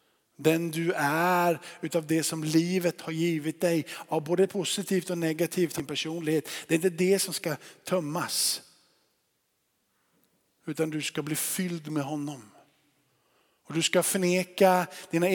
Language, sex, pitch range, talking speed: Swedish, male, 150-175 Hz, 140 wpm